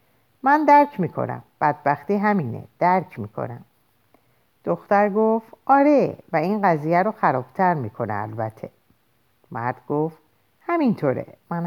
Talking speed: 110 wpm